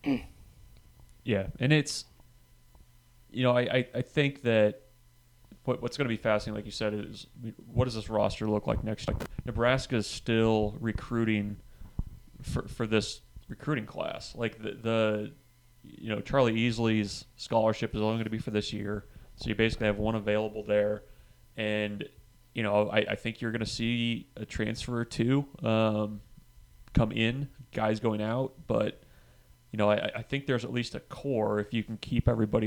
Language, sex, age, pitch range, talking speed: English, male, 30-49, 105-120 Hz, 170 wpm